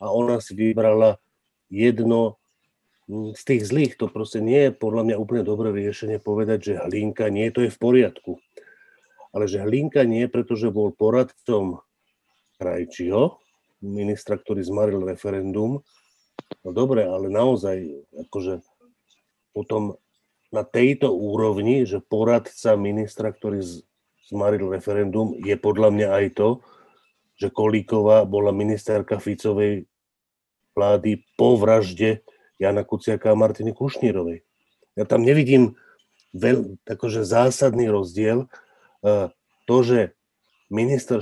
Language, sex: Slovak, male